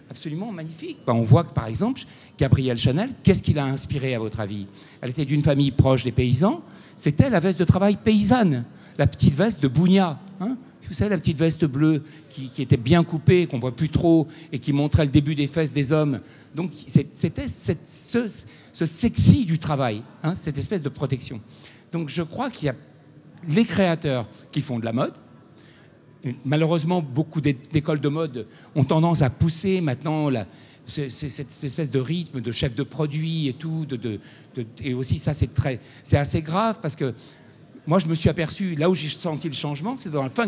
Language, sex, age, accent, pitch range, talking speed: English, male, 60-79, French, 135-175 Hz, 205 wpm